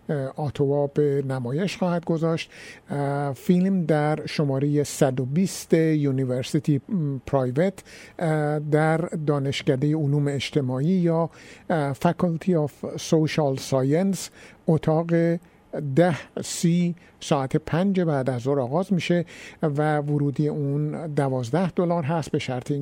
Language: Persian